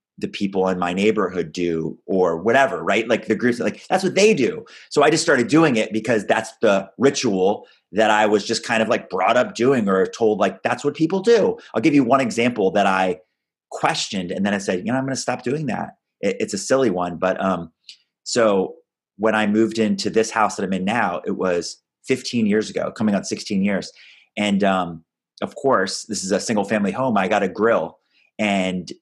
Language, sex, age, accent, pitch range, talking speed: English, male, 30-49, American, 95-155 Hz, 215 wpm